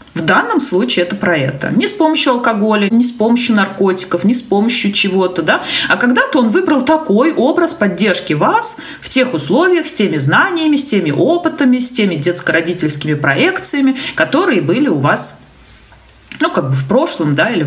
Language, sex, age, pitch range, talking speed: Russian, female, 30-49, 175-250 Hz, 175 wpm